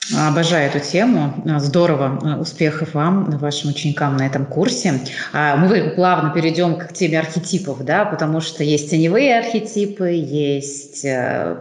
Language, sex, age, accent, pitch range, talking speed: Russian, female, 30-49, native, 150-185 Hz, 125 wpm